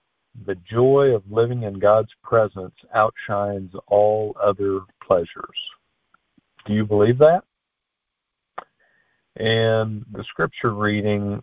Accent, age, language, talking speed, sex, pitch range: American, 50-69, English, 100 wpm, male, 95-115 Hz